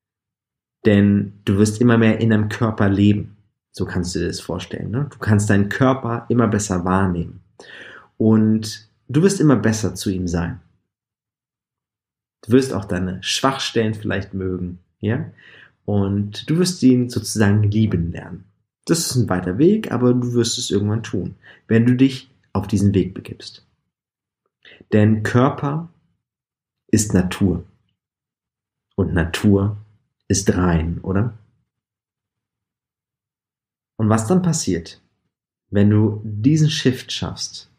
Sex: male